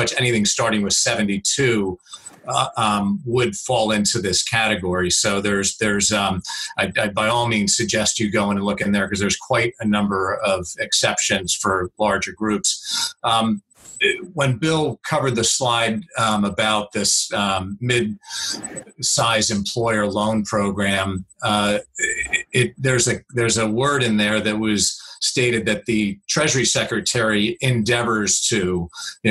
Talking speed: 150 wpm